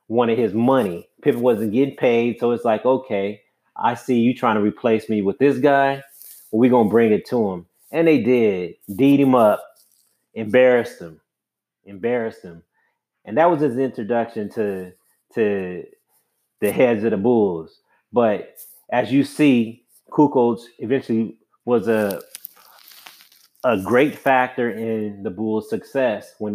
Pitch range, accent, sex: 105-125 Hz, American, male